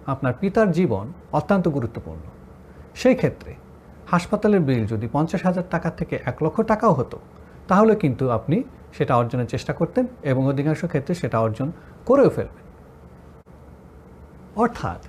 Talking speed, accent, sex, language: 130 wpm, native, male, Bengali